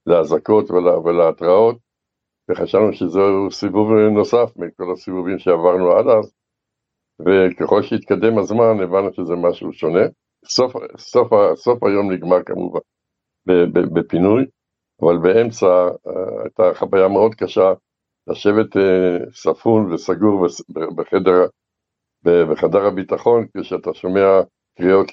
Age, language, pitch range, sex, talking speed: 60-79, Hebrew, 90-110 Hz, male, 100 wpm